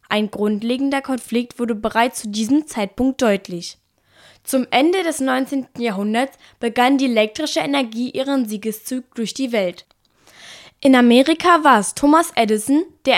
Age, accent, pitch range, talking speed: 10-29, German, 220-275 Hz, 135 wpm